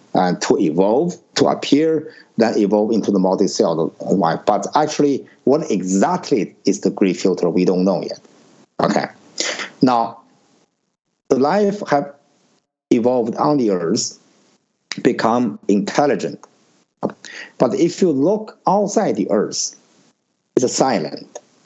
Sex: male